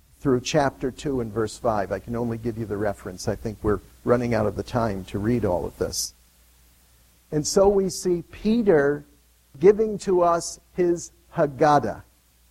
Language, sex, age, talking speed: English, male, 50-69, 175 wpm